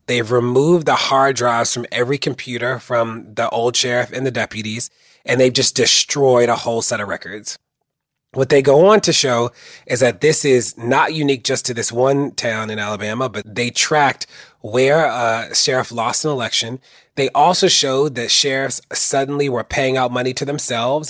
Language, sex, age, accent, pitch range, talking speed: English, male, 30-49, American, 120-135 Hz, 185 wpm